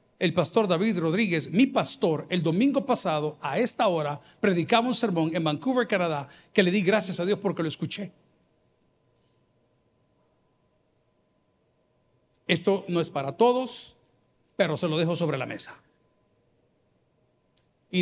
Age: 50-69